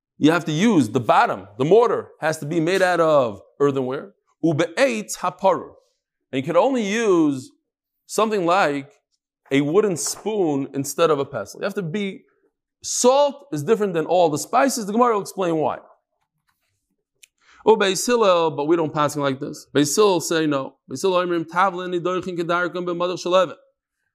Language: English